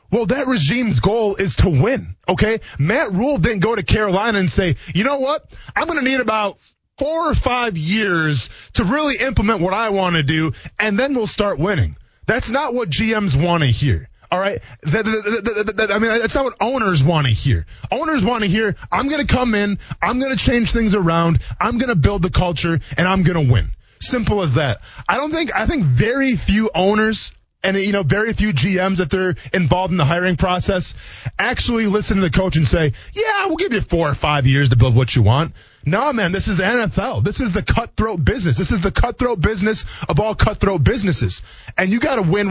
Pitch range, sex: 155-230 Hz, male